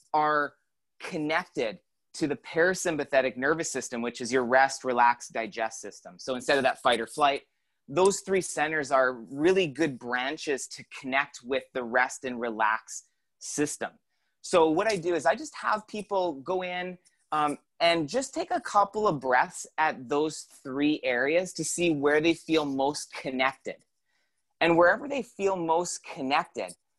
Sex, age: male, 30-49